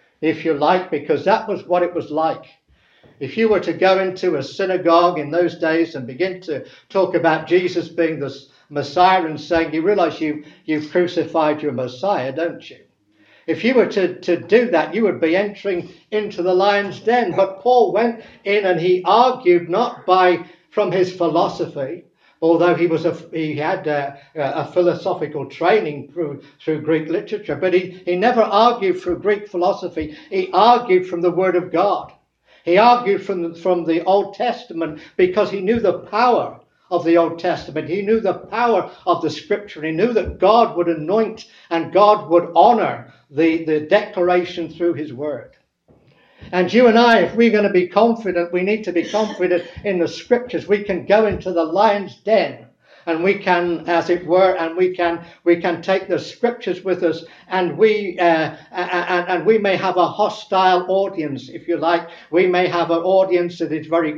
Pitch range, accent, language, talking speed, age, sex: 165-195 Hz, British, English, 185 wpm, 60-79, male